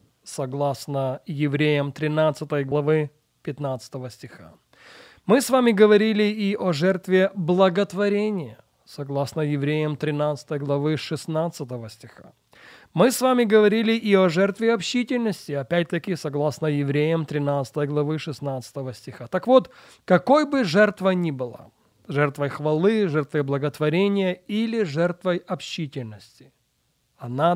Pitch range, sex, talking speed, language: 145-200 Hz, male, 110 wpm, Russian